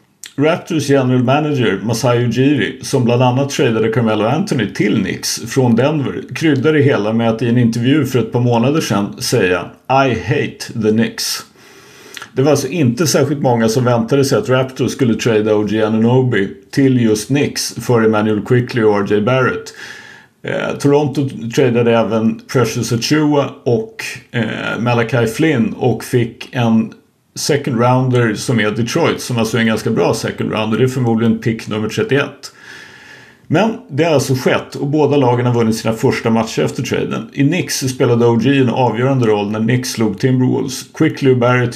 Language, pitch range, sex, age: Swedish, 115-140 Hz, male, 50-69